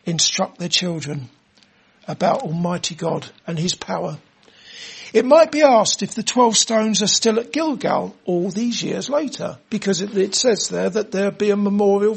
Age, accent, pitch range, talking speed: 60-79, British, 195-240 Hz, 170 wpm